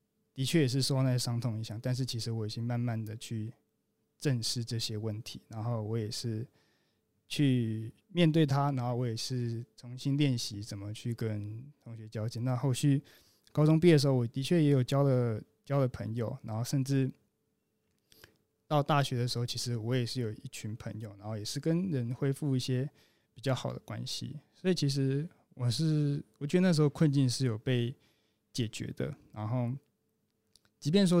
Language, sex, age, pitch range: Chinese, male, 20-39, 115-140 Hz